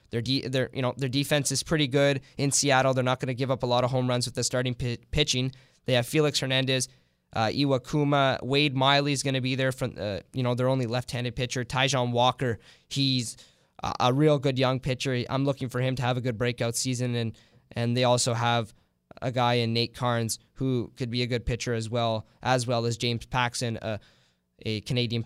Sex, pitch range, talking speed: male, 120-130 Hz, 225 wpm